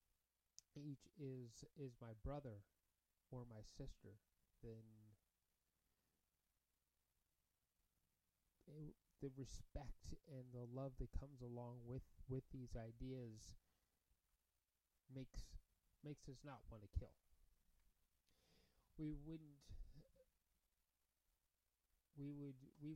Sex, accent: male, American